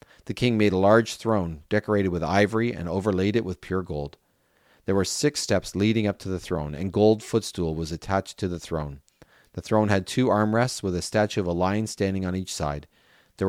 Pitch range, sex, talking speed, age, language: 85-110 Hz, male, 215 wpm, 40-59, English